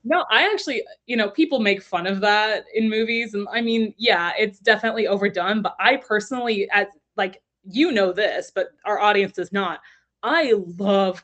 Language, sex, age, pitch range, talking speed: English, female, 20-39, 190-230 Hz, 175 wpm